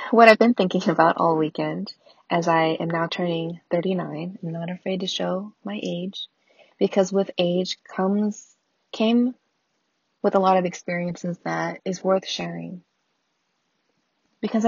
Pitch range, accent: 175-220 Hz, American